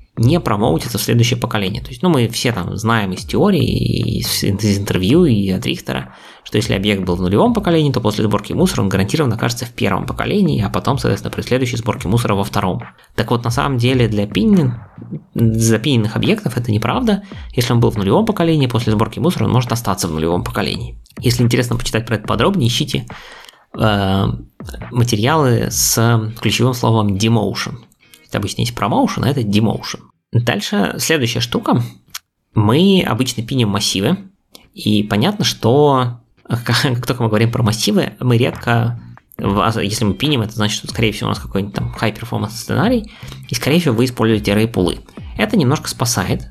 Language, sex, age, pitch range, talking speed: Russian, male, 20-39, 100-125 Hz, 175 wpm